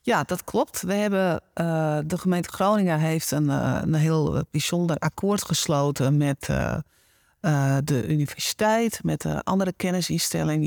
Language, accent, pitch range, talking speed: Dutch, Dutch, 145-175 Hz, 130 wpm